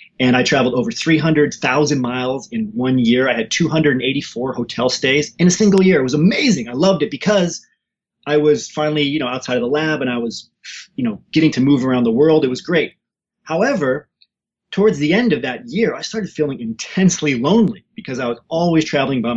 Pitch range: 125-165 Hz